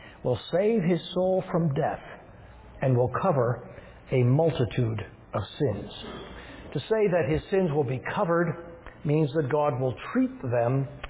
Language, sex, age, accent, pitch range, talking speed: English, male, 60-79, American, 130-175 Hz, 145 wpm